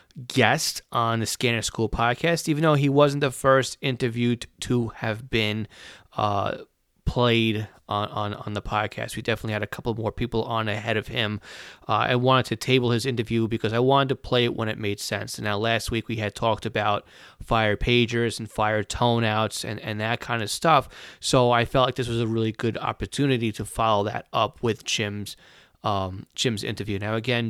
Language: English